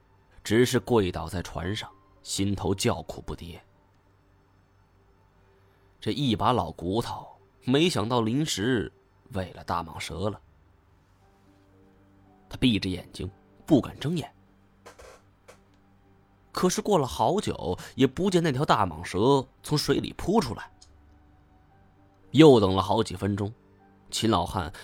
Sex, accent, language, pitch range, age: male, native, Chinese, 95-110 Hz, 20-39